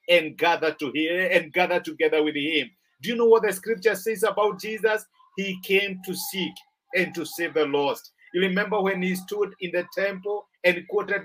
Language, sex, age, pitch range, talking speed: English, male, 50-69, 180-230 Hz, 195 wpm